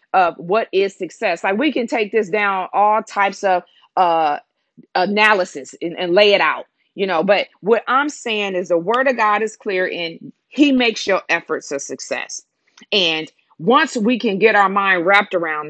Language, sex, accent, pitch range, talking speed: English, female, American, 185-230 Hz, 185 wpm